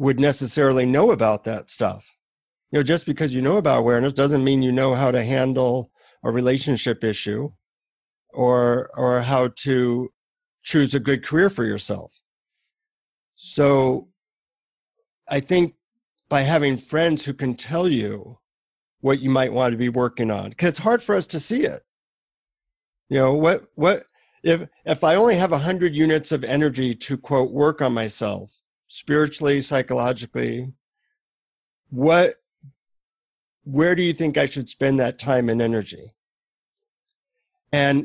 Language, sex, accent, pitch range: English, male, American, 125-160 Hz